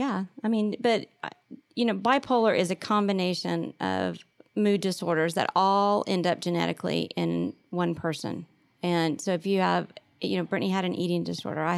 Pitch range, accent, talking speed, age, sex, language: 170-205 Hz, American, 175 wpm, 40-59, female, English